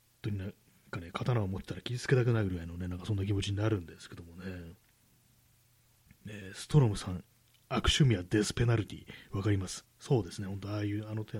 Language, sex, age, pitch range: Japanese, male, 30-49, 95-125 Hz